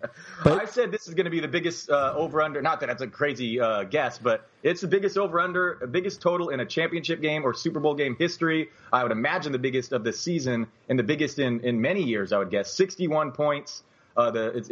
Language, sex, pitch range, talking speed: English, male, 125-165 Hz, 230 wpm